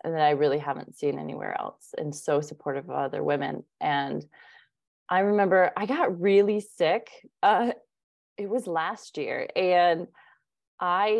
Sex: female